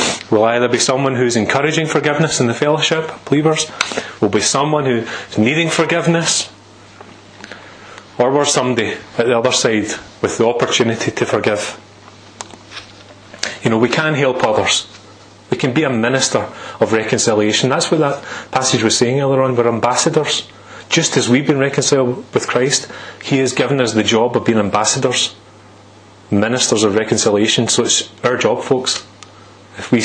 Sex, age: male, 30-49